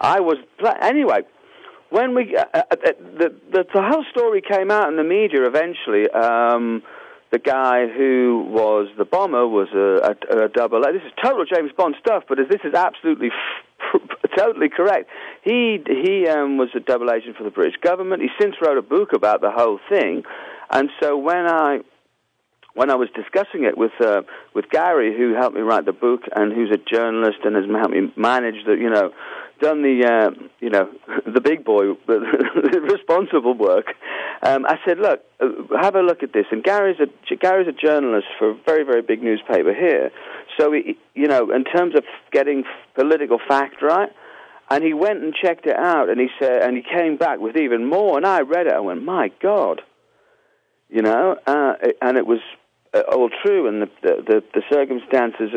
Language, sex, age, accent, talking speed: English, male, 40-59, British, 190 wpm